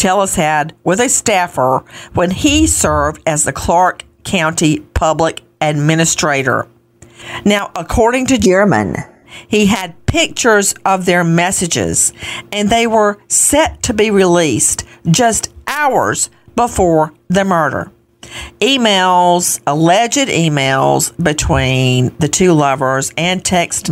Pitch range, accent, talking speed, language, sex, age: 130-185 Hz, American, 115 wpm, English, female, 50-69